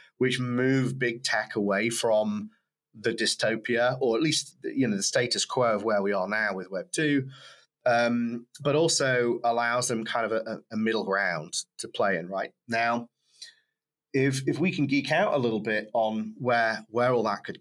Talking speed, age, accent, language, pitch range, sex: 185 wpm, 30-49, British, English, 115-140 Hz, male